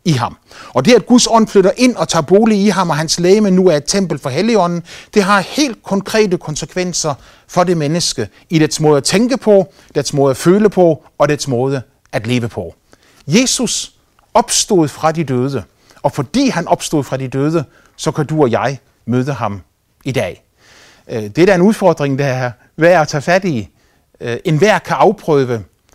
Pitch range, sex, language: 125-175 Hz, male, Danish